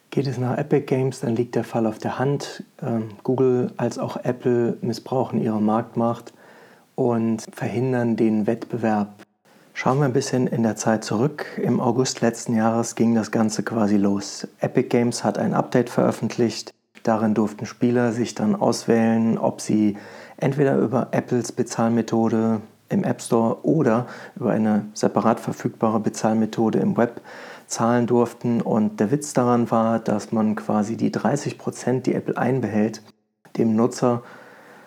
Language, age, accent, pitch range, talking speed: German, 40-59, German, 110-125 Hz, 150 wpm